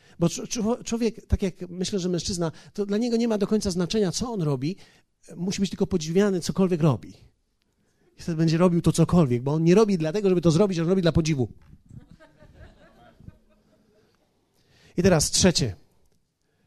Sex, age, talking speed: male, 40-59, 160 wpm